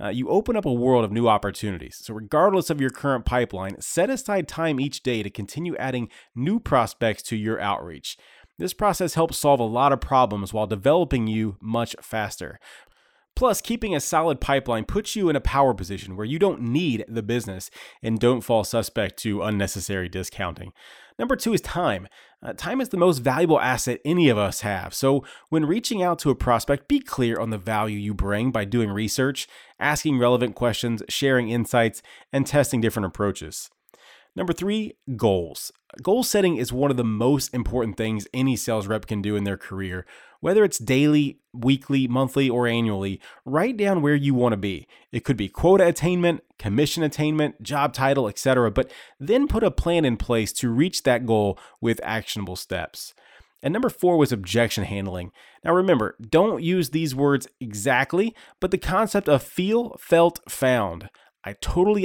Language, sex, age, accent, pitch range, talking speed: English, male, 30-49, American, 110-155 Hz, 180 wpm